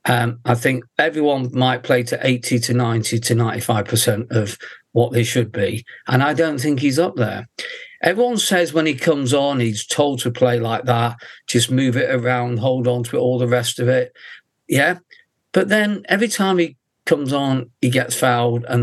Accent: British